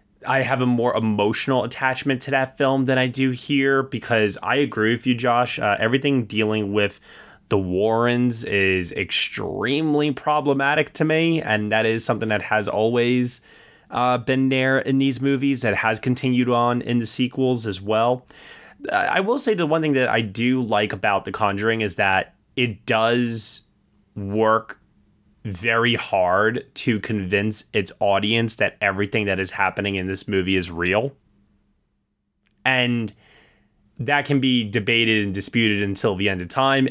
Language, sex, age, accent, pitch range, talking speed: English, male, 20-39, American, 105-130 Hz, 160 wpm